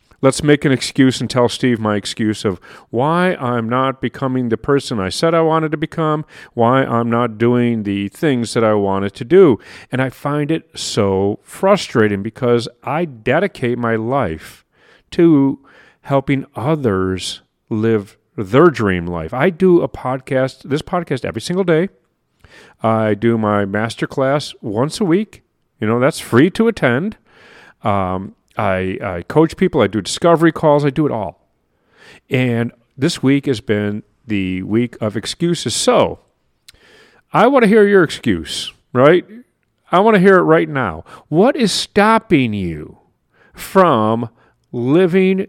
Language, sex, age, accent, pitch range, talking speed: English, male, 40-59, American, 110-160 Hz, 155 wpm